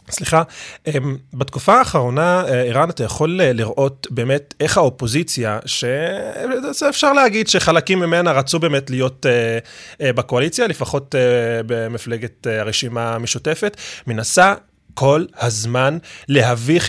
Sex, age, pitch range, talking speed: male, 20-39, 125-165 Hz, 90 wpm